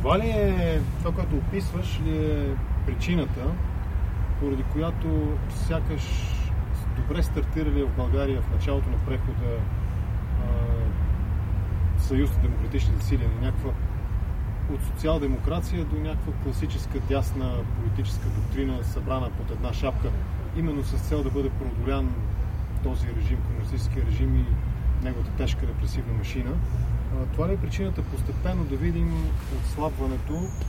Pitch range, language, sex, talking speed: 80-100 Hz, English, male, 115 wpm